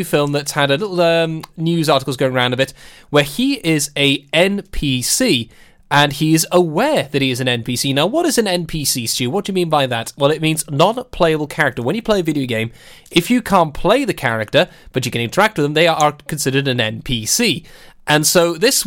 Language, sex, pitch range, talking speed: English, male, 140-185 Hz, 220 wpm